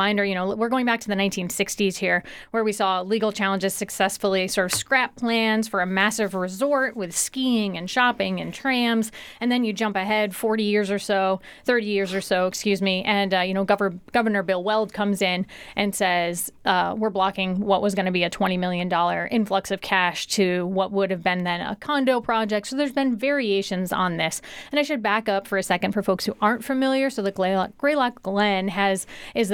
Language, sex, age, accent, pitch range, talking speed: English, female, 30-49, American, 190-230 Hz, 210 wpm